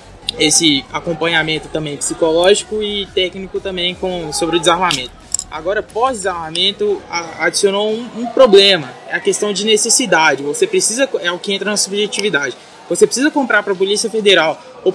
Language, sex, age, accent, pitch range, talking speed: Portuguese, male, 20-39, Brazilian, 175-215 Hz, 155 wpm